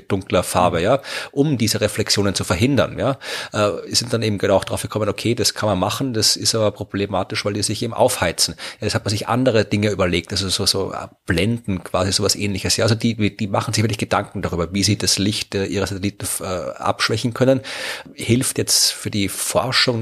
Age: 30-49